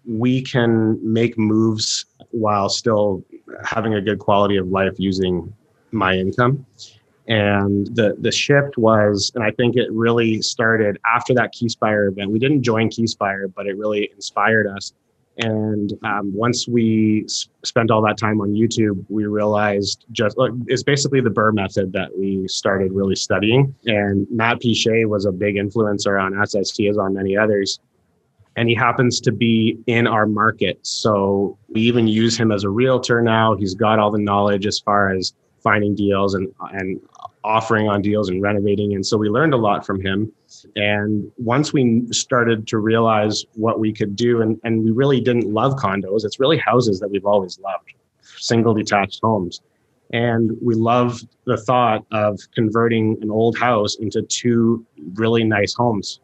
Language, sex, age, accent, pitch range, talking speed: English, male, 30-49, American, 100-115 Hz, 170 wpm